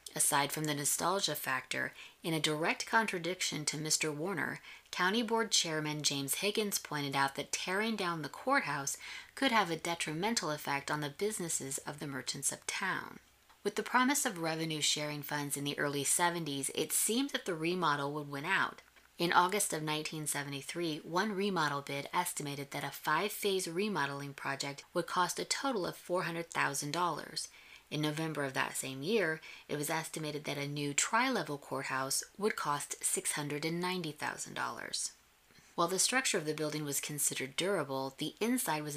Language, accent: English, American